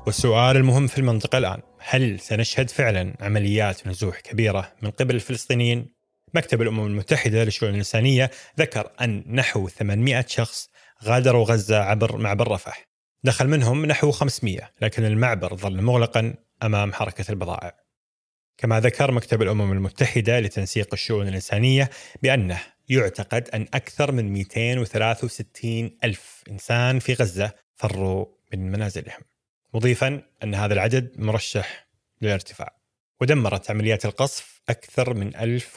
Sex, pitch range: male, 105-125 Hz